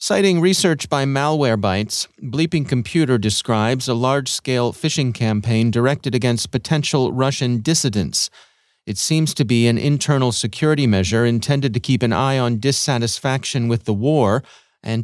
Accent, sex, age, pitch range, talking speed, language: American, male, 30-49, 110-140 Hz, 145 wpm, English